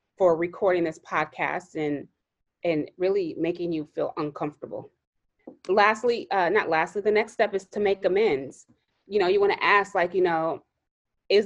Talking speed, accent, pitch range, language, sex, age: 170 wpm, American, 165-220 Hz, English, female, 20-39